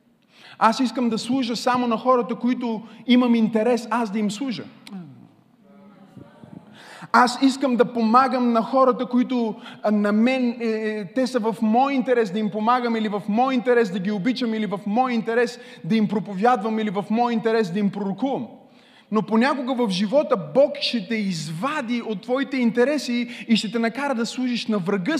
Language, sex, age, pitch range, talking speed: Bulgarian, male, 20-39, 210-255 Hz, 170 wpm